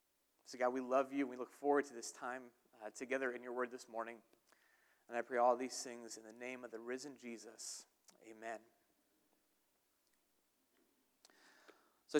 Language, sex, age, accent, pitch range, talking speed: English, male, 30-49, American, 135-180 Hz, 165 wpm